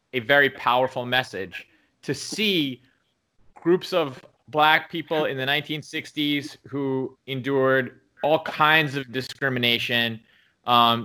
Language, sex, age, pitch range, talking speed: English, male, 30-49, 120-145 Hz, 110 wpm